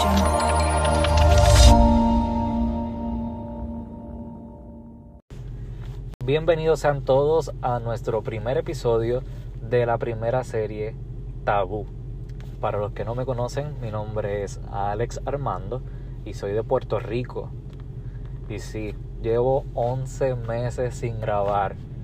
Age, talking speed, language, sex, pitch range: 20-39, 95 wpm, Spanish, male, 115-130 Hz